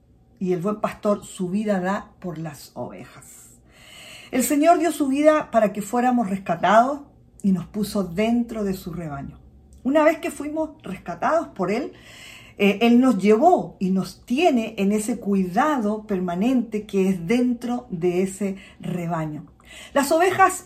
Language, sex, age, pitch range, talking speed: Spanish, female, 50-69, 185-250 Hz, 150 wpm